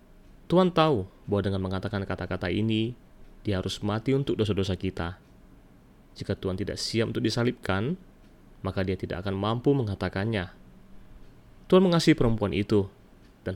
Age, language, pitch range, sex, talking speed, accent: 20-39, Indonesian, 95-120 Hz, male, 135 wpm, native